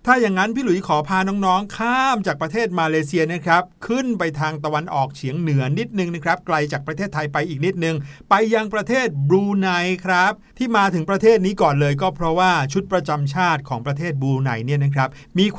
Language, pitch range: Thai, 140-185 Hz